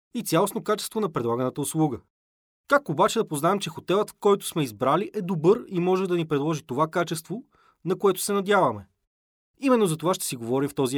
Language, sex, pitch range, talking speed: Bulgarian, male, 145-195 Hz, 195 wpm